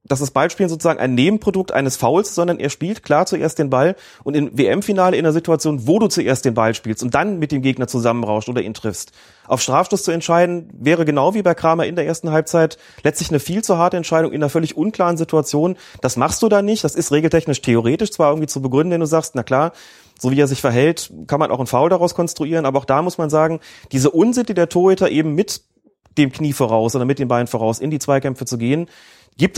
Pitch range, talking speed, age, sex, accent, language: 130-170 Hz, 240 wpm, 30-49, male, German, German